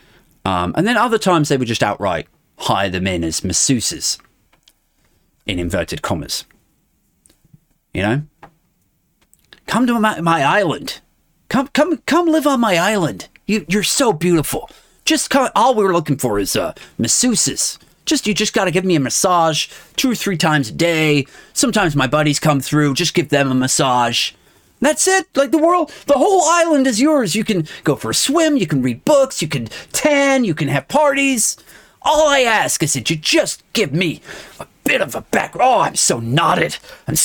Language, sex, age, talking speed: English, male, 30-49, 185 wpm